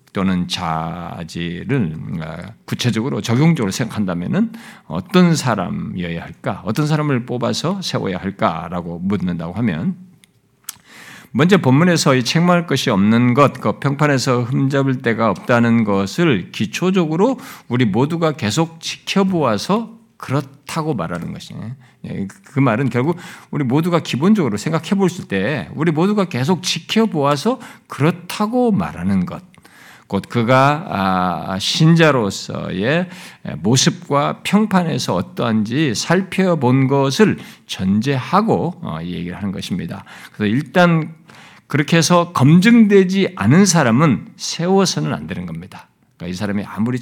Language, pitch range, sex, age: Korean, 115-180 Hz, male, 50-69